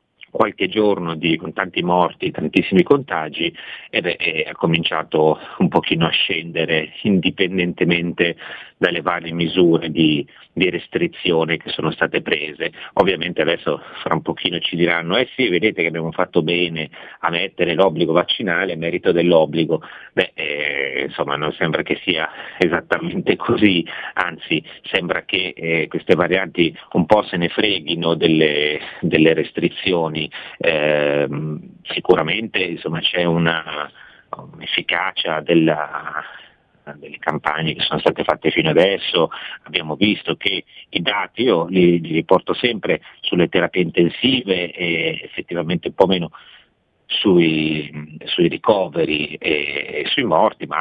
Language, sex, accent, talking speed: Italian, male, native, 135 wpm